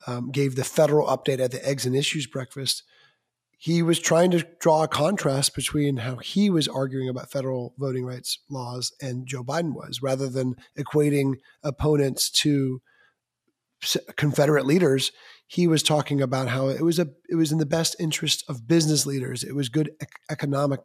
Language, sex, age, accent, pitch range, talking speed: English, male, 30-49, American, 135-165 Hz, 175 wpm